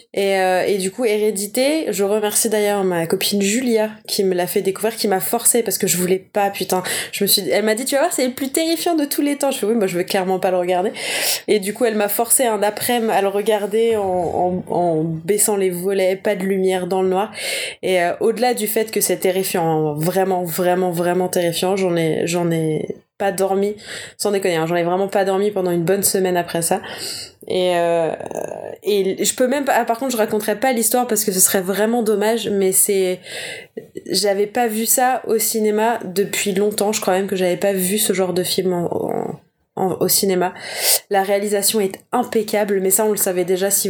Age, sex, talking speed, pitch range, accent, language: 20-39, female, 225 wpm, 185-220 Hz, French, French